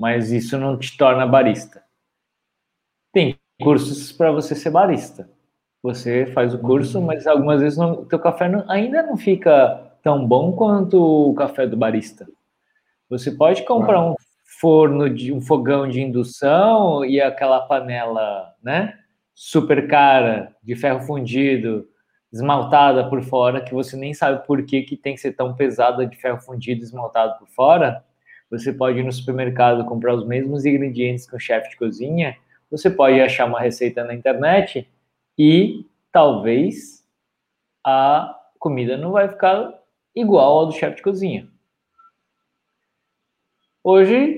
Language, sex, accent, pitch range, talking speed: Portuguese, male, Brazilian, 125-165 Hz, 145 wpm